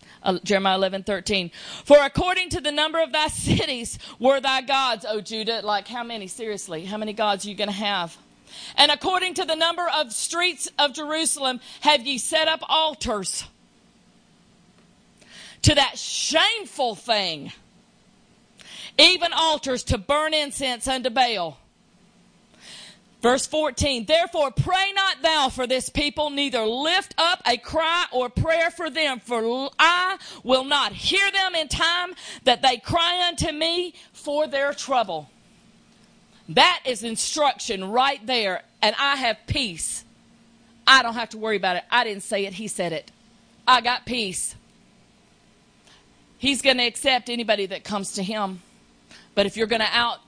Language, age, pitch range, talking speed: English, 50-69, 215-310 Hz, 155 wpm